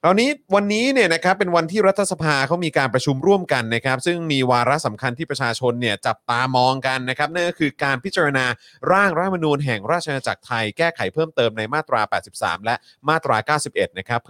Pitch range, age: 115-160 Hz, 30-49